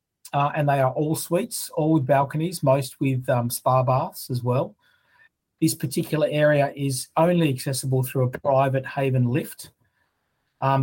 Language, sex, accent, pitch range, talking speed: English, male, Australian, 130-150 Hz, 155 wpm